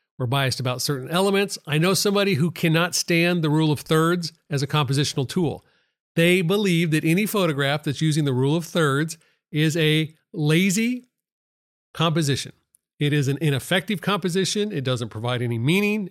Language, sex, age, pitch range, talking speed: English, male, 40-59, 140-185 Hz, 165 wpm